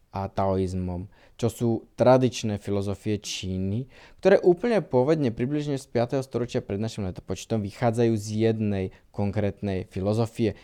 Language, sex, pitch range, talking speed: Slovak, male, 100-120 Hz, 125 wpm